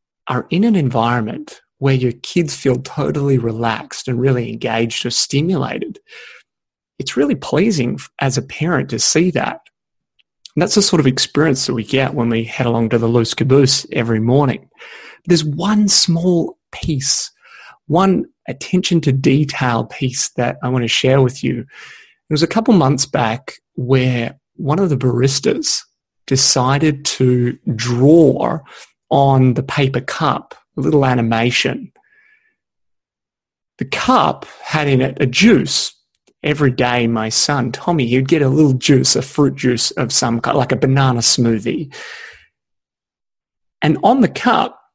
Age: 30-49